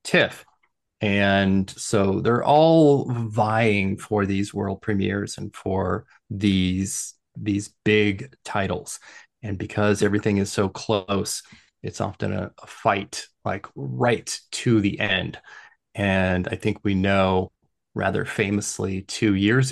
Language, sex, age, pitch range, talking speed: English, male, 30-49, 100-120 Hz, 125 wpm